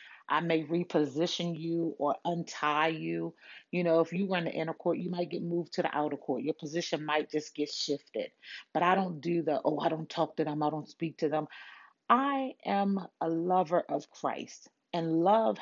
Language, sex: English, female